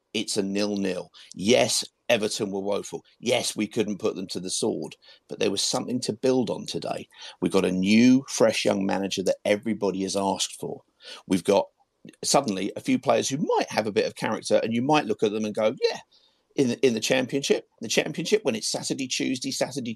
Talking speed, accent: 205 wpm, British